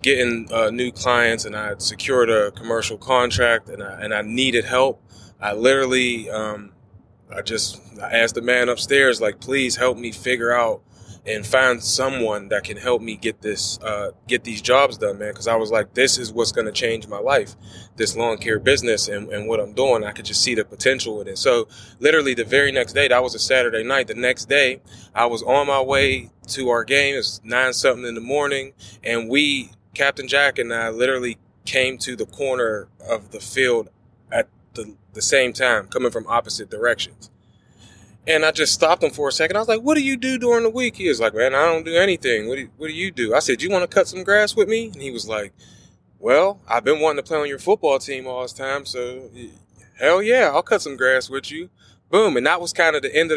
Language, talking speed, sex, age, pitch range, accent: English, 230 wpm, male, 20-39, 115-155 Hz, American